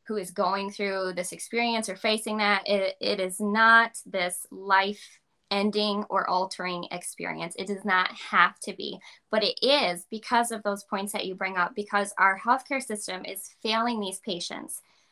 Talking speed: 175 wpm